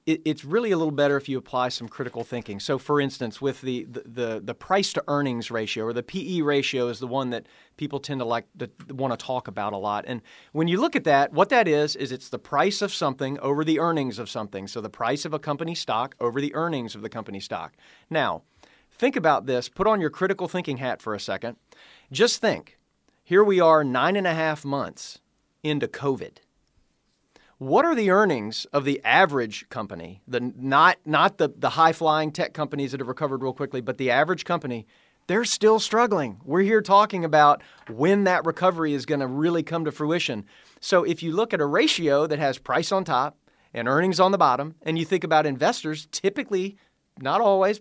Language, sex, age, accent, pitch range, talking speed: English, male, 40-59, American, 130-170 Hz, 210 wpm